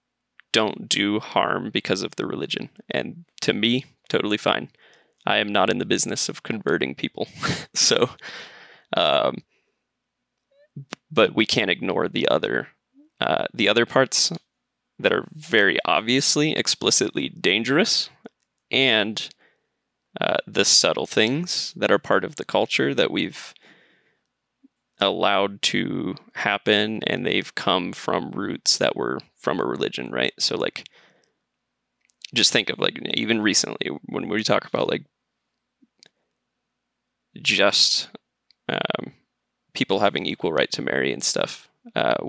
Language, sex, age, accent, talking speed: English, male, 20-39, American, 130 wpm